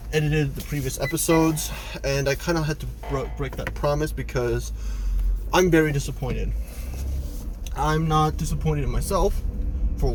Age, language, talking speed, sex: 20-39, English, 140 wpm, male